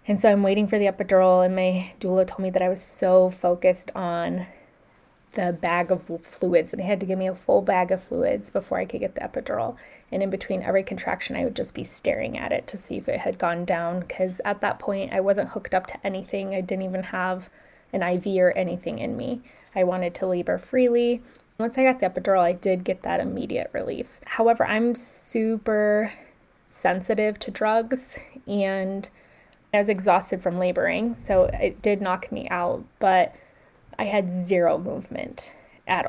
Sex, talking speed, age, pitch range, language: female, 195 wpm, 20-39, 185-215 Hz, English